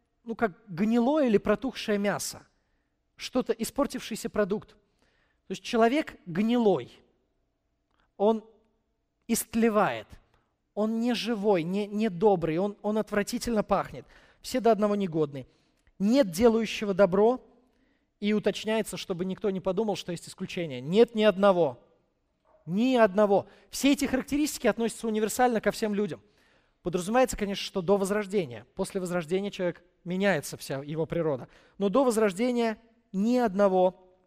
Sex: male